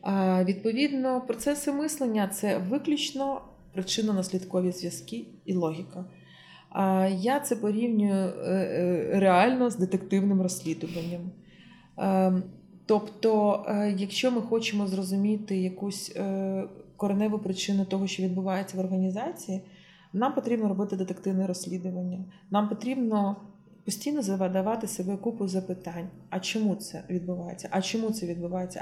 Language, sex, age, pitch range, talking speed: Ukrainian, female, 20-39, 185-235 Hz, 105 wpm